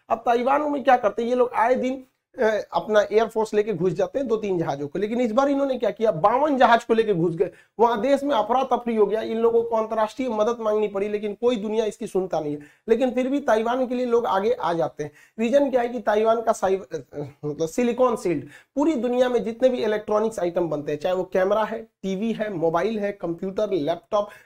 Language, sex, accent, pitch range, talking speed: Hindi, male, native, 190-245 Hz, 230 wpm